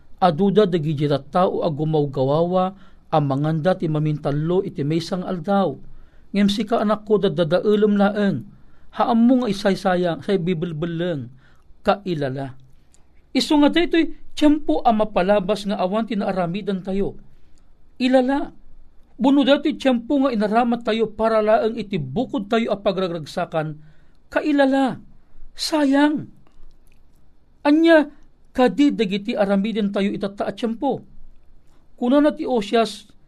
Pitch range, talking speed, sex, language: 160-215 Hz, 115 wpm, male, Filipino